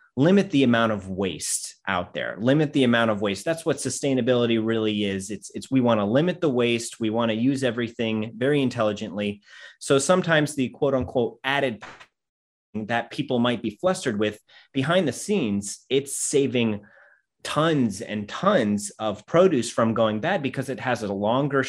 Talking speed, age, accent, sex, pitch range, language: 170 wpm, 30-49, American, male, 105-135 Hz, English